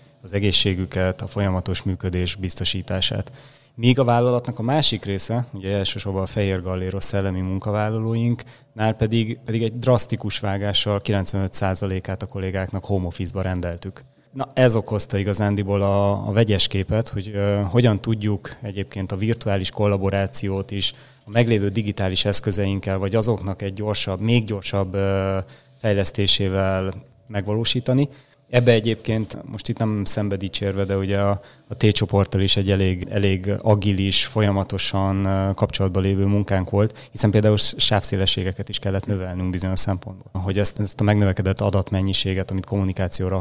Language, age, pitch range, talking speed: Hungarian, 20-39, 95-115 Hz, 135 wpm